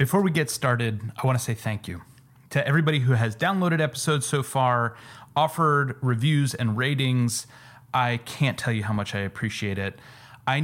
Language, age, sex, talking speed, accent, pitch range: English, 30-49, male, 180 wpm, American, 110-135 Hz